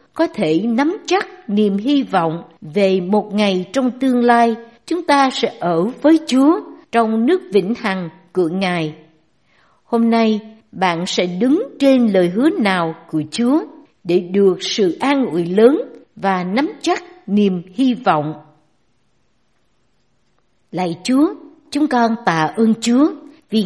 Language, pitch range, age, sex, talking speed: Vietnamese, 190-275 Hz, 60-79, female, 140 wpm